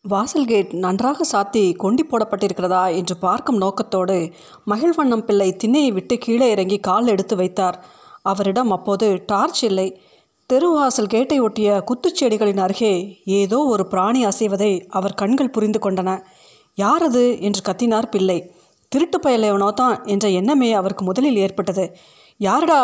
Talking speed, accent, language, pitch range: 120 wpm, native, Tamil, 190-245 Hz